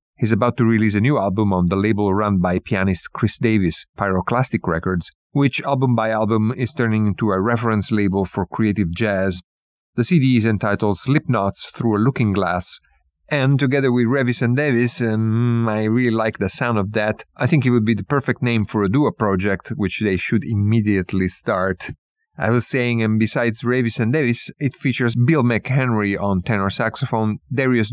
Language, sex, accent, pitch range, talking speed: English, male, Italian, 100-120 Hz, 185 wpm